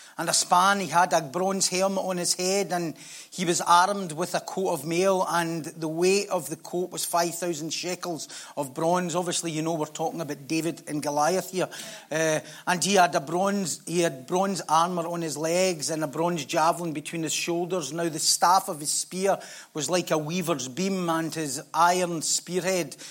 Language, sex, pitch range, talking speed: English, male, 165-185 Hz, 190 wpm